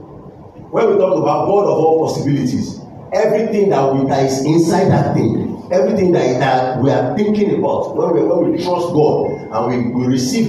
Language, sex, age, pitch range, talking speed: English, male, 50-69, 135-175 Hz, 190 wpm